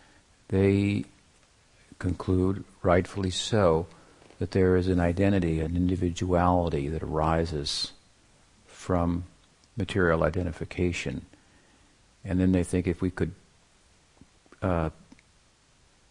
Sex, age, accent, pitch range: male, 50-69, American, 85-100 Hz